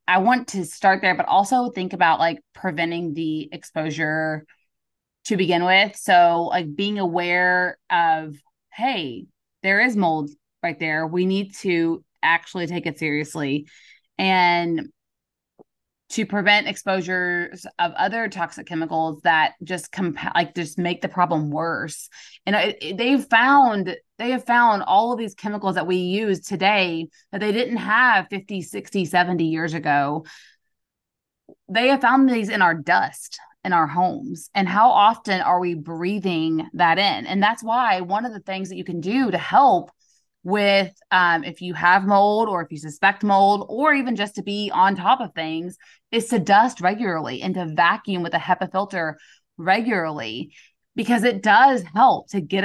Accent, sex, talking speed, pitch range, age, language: American, female, 165 wpm, 170-210 Hz, 20-39, English